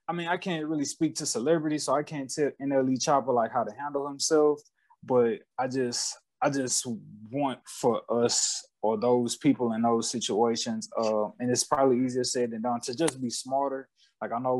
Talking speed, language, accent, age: 195 wpm, English, American, 20-39